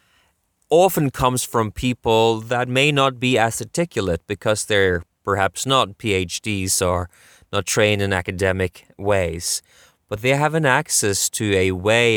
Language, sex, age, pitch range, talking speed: English, male, 20-39, 95-120 Hz, 145 wpm